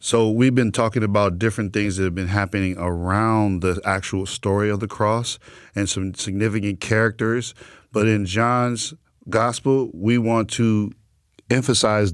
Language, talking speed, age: English, 150 wpm, 40-59